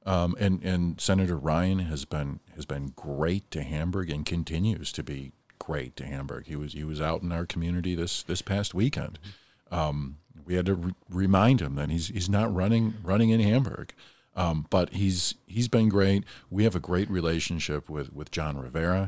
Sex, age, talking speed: male, 50-69, 190 wpm